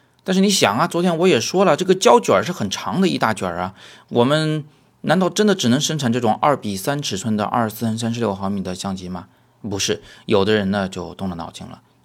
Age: 30-49